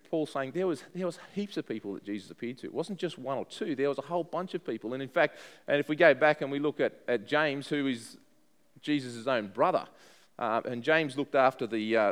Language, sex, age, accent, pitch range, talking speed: English, male, 30-49, Australian, 120-155 Hz, 255 wpm